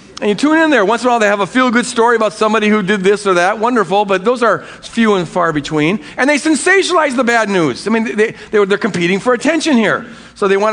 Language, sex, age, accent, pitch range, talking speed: English, male, 50-69, American, 195-270 Hz, 265 wpm